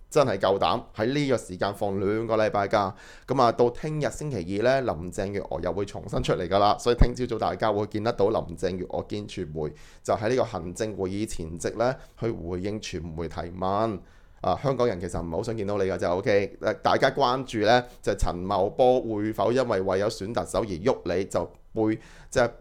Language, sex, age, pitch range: Chinese, male, 30-49, 95-120 Hz